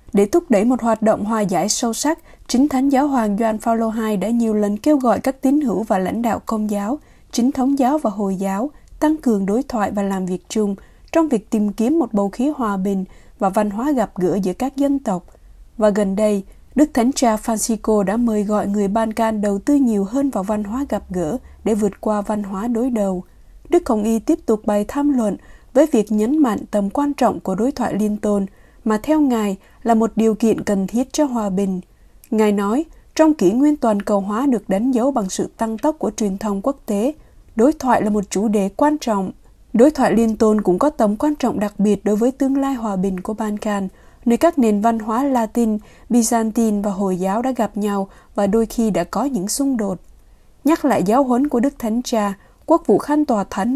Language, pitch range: Vietnamese, 205-260 Hz